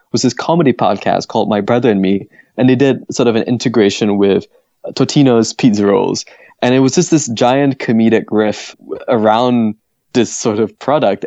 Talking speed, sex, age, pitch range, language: 175 wpm, male, 20-39, 110-145 Hz, German